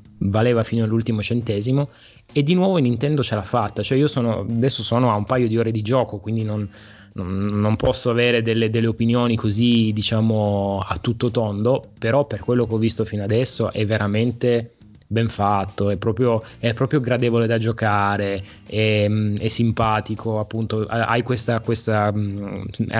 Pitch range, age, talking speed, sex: 105-120 Hz, 20-39, 165 wpm, male